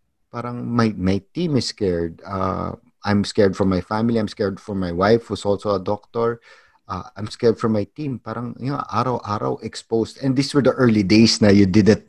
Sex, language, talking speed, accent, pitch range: male, English, 205 wpm, Filipino, 100-130 Hz